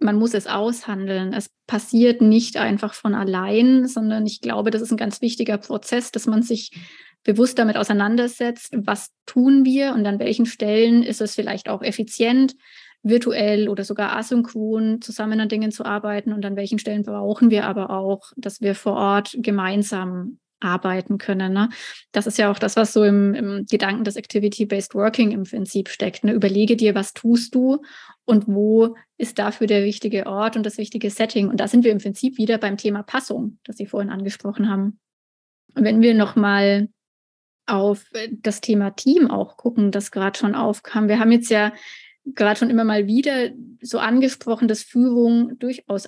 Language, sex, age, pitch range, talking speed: German, female, 20-39, 205-235 Hz, 180 wpm